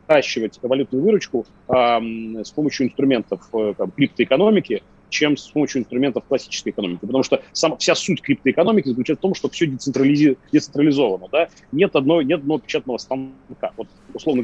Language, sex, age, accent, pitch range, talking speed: Russian, male, 30-49, native, 130-155 Hz, 155 wpm